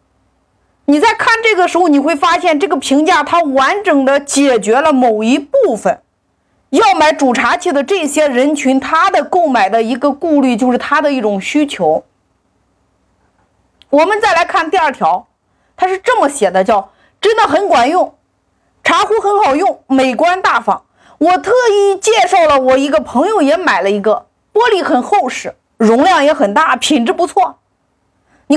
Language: Chinese